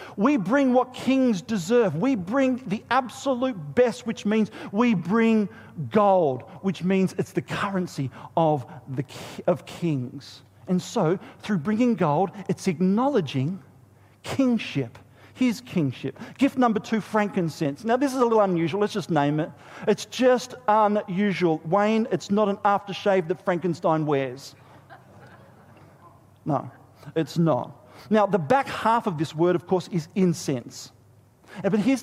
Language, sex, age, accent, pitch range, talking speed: English, male, 40-59, Australian, 140-225 Hz, 140 wpm